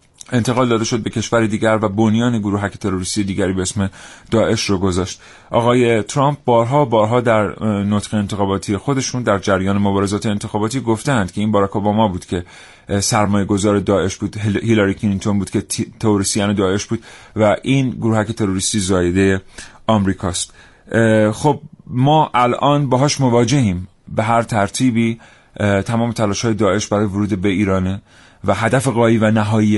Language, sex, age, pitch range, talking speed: Persian, male, 30-49, 100-115 Hz, 150 wpm